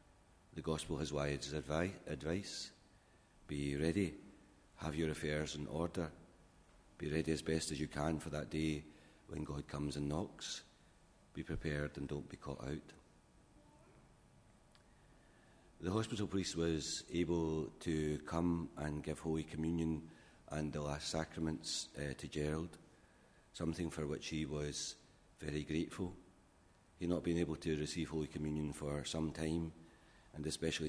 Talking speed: 140 wpm